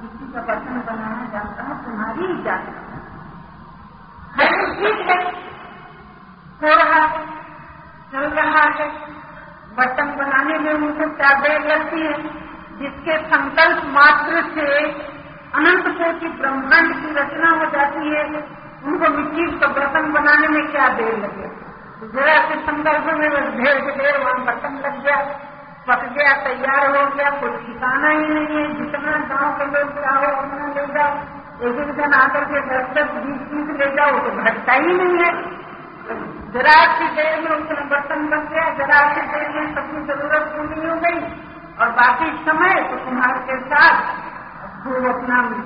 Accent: native